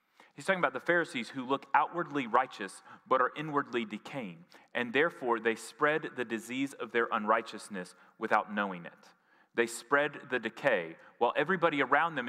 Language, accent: English, American